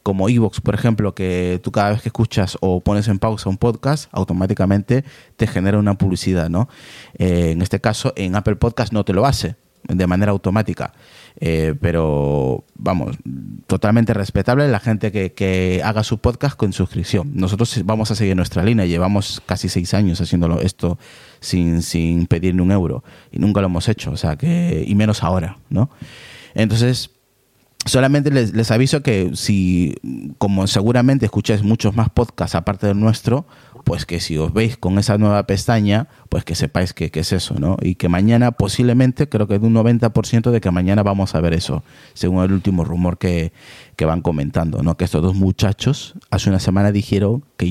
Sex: male